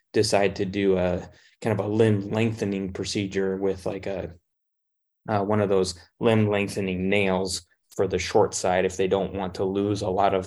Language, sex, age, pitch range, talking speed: English, male, 20-39, 95-105 Hz, 190 wpm